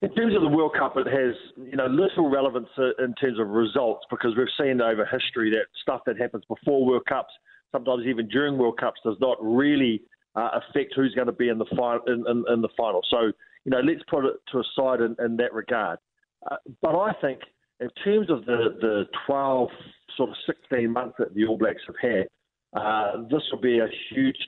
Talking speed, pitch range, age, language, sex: 220 wpm, 115-140 Hz, 50-69, English, male